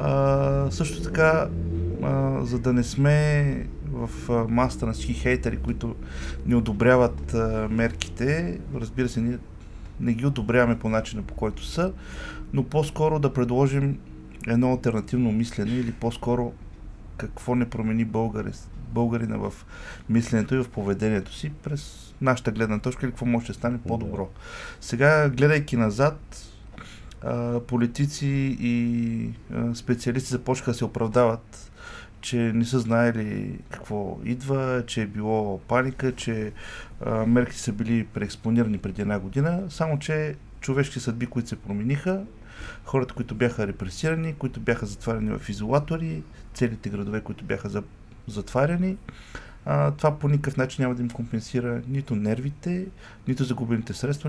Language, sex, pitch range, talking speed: Bulgarian, male, 110-130 Hz, 135 wpm